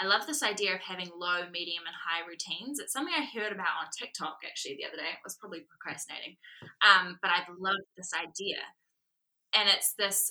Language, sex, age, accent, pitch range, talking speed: English, female, 10-29, Australian, 165-195 Hz, 205 wpm